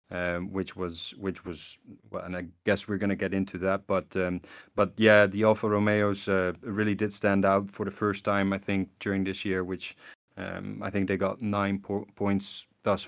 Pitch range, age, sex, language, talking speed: 95-105 Hz, 20-39, male, English, 200 wpm